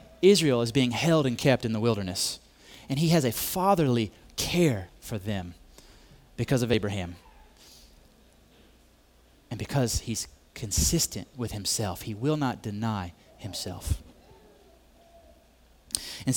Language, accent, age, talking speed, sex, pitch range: English, American, 30-49, 115 wpm, male, 95-140 Hz